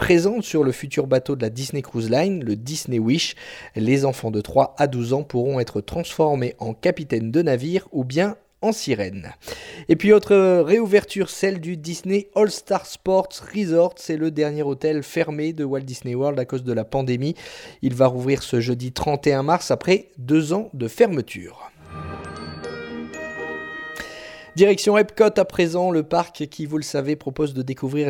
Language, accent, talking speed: French, French, 170 wpm